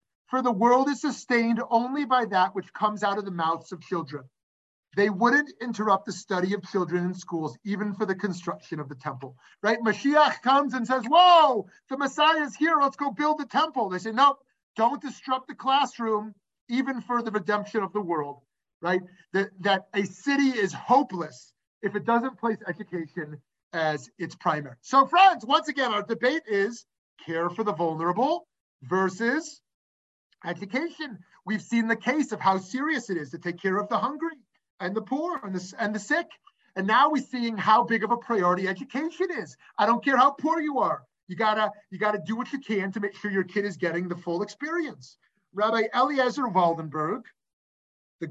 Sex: male